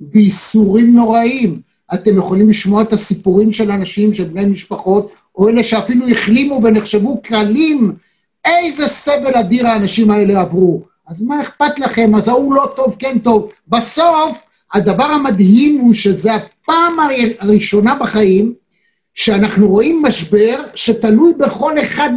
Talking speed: 130 wpm